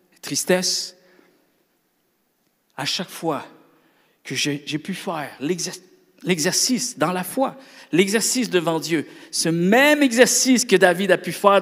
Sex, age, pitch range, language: male, 50-69, 150-205 Hz, French